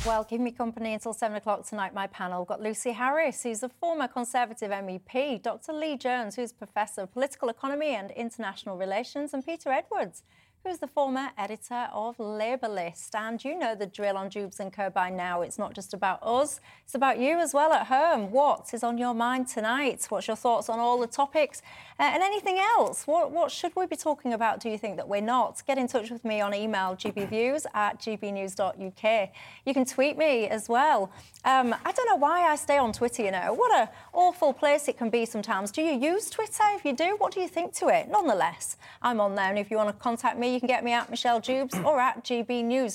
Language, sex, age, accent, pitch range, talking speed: English, female, 30-49, British, 210-280 Hz, 225 wpm